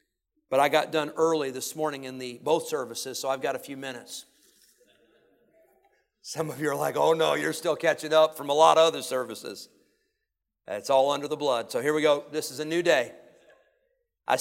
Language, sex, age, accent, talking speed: English, male, 50-69, American, 205 wpm